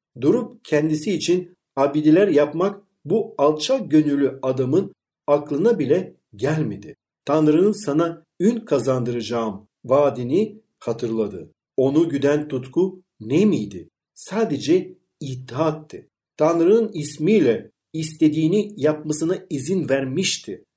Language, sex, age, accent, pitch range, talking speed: Turkish, male, 50-69, native, 145-200 Hz, 90 wpm